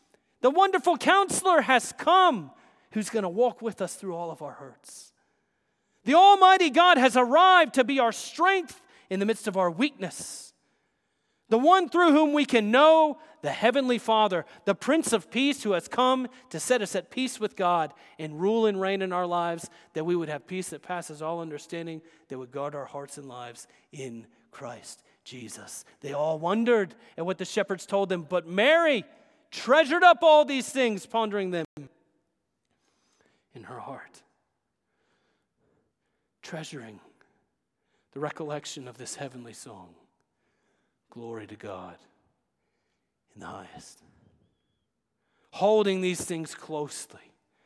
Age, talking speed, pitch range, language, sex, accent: 40-59, 150 wpm, 170-255 Hz, English, male, American